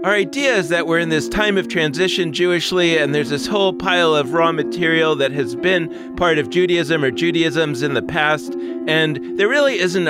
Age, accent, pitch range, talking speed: 40-59, American, 150-185 Hz, 200 wpm